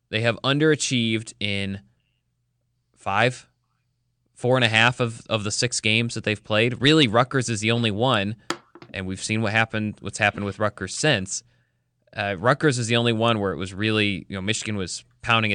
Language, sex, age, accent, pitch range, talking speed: English, male, 20-39, American, 105-125 Hz, 185 wpm